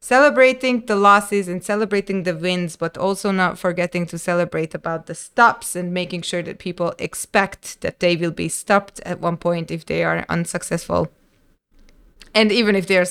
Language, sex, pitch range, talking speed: English, female, 170-210 Hz, 180 wpm